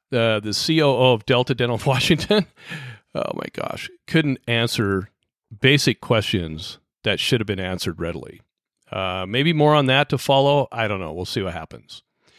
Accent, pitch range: American, 110-140 Hz